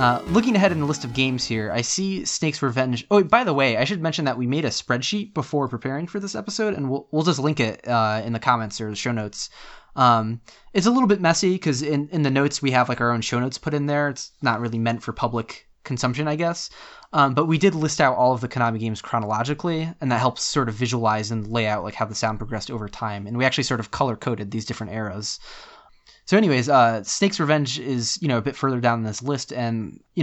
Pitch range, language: 115-145 Hz, English